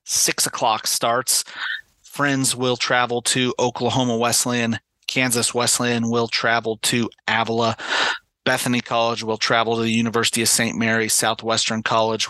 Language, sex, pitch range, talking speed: English, male, 110-120 Hz, 130 wpm